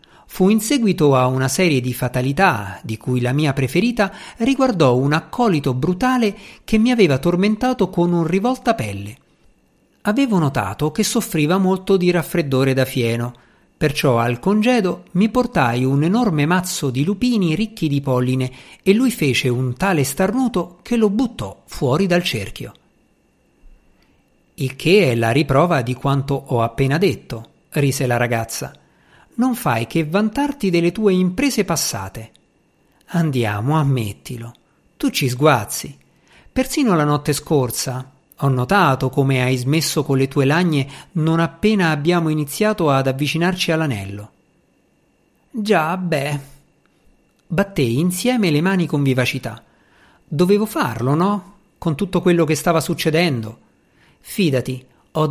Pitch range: 130-195 Hz